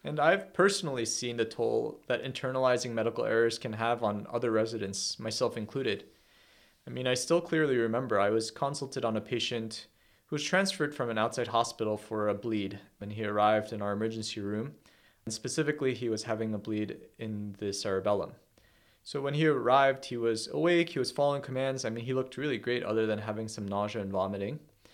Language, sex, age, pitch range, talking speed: English, male, 30-49, 110-135 Hz, 195 wpm